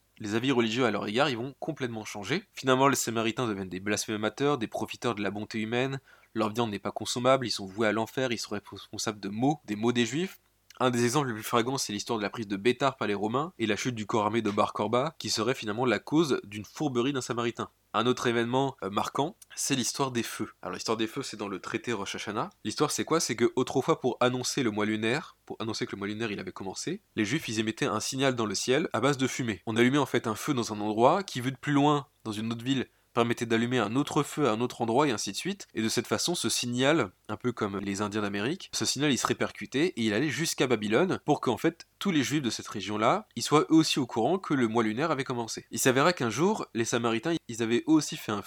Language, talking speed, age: French, 260 wpm, 20-39